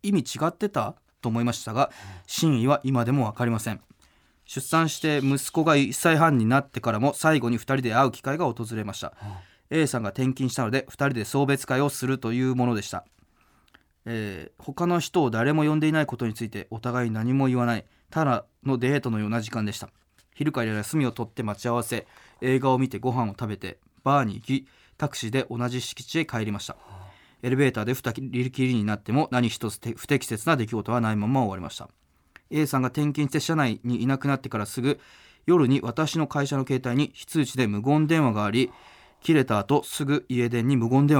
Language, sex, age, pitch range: Japanese, male, 20-39, 115-140 Hz